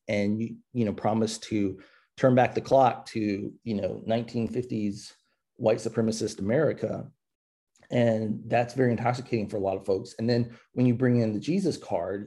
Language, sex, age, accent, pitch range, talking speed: English, male, 30-49, American, 100-120 Hz, 170 wpm